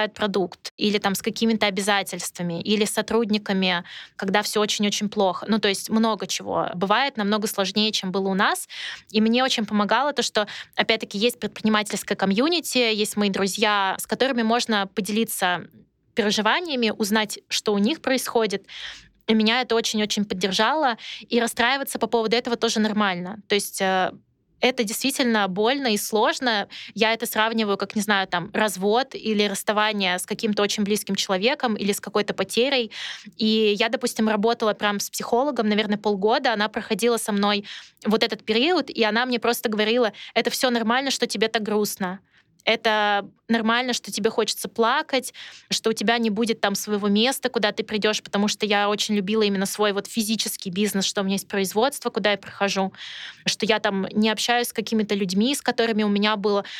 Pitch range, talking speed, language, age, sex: 205-230 Hz, 170 wpm, Russian, 20-39, female